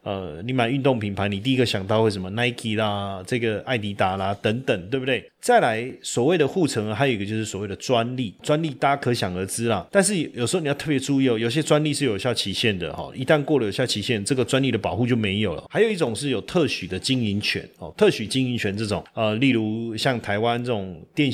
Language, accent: Chinese, native